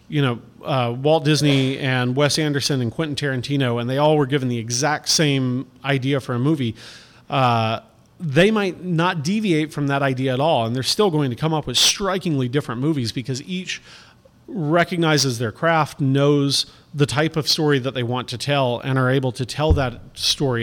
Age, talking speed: 40-59, 190 wpm